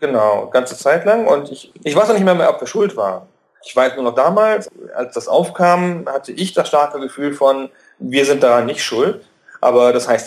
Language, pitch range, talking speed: German, 120-160 Hz, 220 wpm